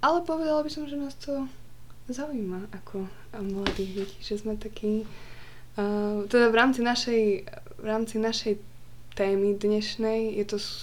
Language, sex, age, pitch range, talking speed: Slovak, female, 20-39, 180-210 Hz, 145 wpm